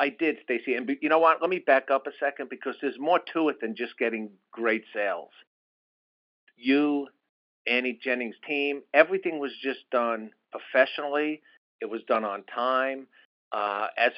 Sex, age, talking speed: male, 50-69, 165 wpm